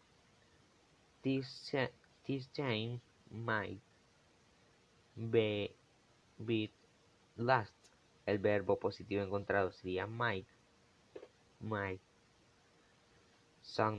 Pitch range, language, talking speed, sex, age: 100-120 Hz, Spanish, 60 wpm, male, 20-39